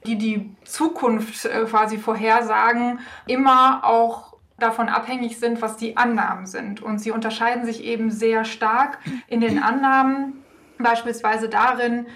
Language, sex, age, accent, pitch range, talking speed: German, female, 20-39, German, 220-250 Hz, 130 wpm